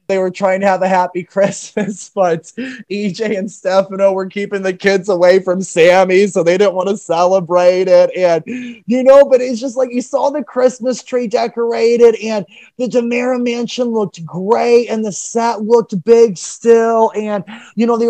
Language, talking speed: English, 180 wpm